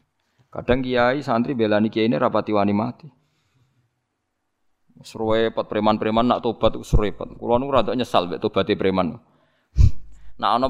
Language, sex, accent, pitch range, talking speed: Indonesian, male, native, 110-160 Hz, 130 wpm